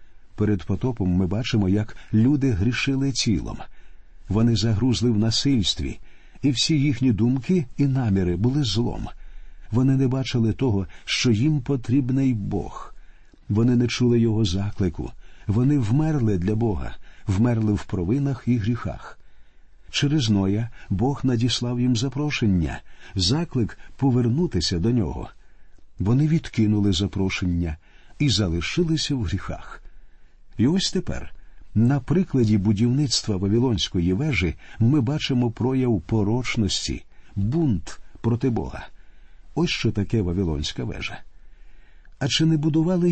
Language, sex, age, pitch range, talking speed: Ukrainian, male, 50-69, 100-130 Hz, 115 wpm